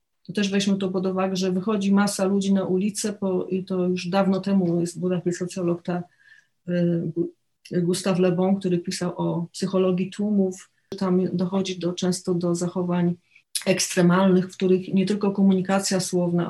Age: 30-49